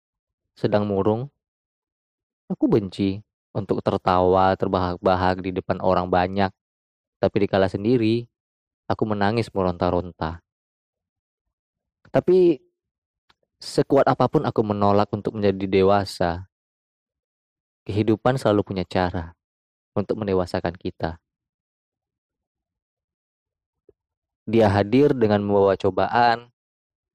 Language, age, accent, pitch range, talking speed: Indonesian, 20-39, native, 95-125 Hz, 85 wpm